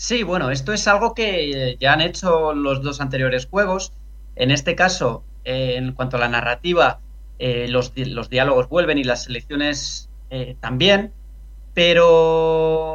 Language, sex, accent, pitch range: Spanish, male, Spanish, 130-170 Hz